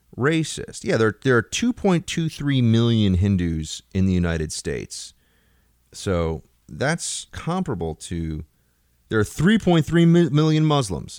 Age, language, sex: 30-49, English, male